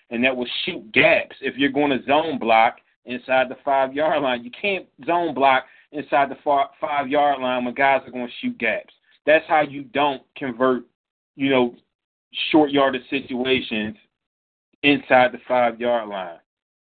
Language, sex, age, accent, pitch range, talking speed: English, male, 30-49, American, 125-160 Hz, 155 wpm